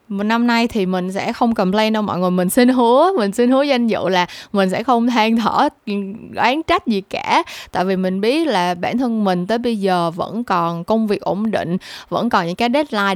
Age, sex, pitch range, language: 20-39, female, 190-240 Hz, Vietnamese